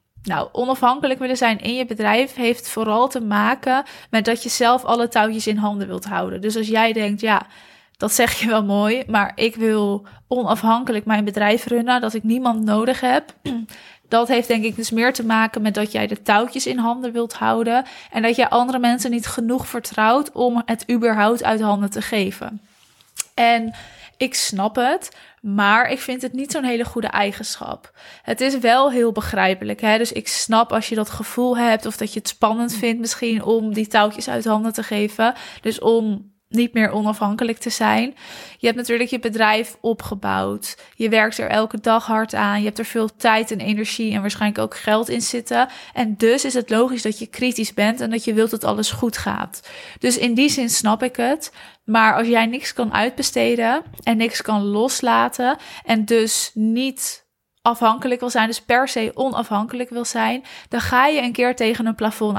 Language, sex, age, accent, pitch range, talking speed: Dutch, female, 20-39, Dutch, 215-245 Hz, 195 wpm